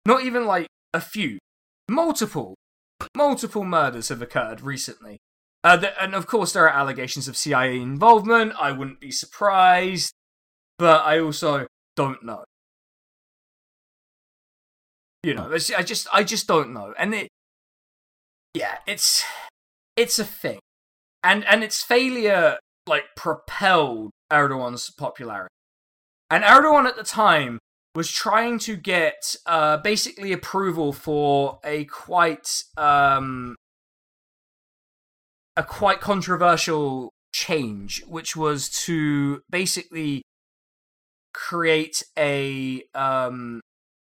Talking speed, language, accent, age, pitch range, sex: 110 wpm, English, British, 20-39, 135-195 Hz, male